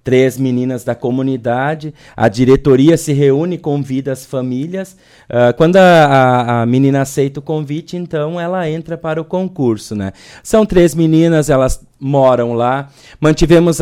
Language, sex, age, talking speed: Portuguese, male, 20-39, 150 wpm